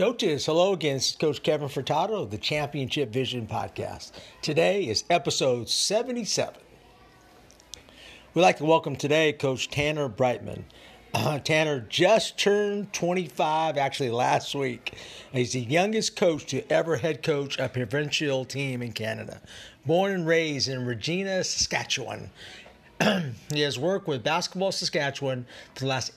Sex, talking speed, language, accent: male, 140 wpm, English, American